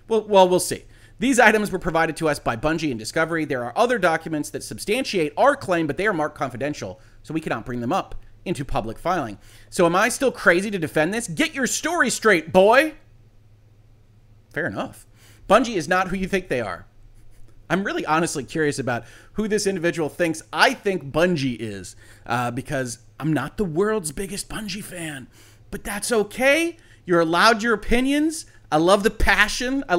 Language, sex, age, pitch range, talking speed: English, male, 30-49, 135-205 Hz, 185 wpm